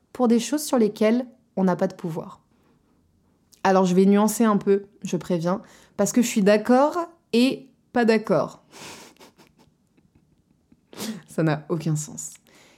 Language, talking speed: French, 140 wpm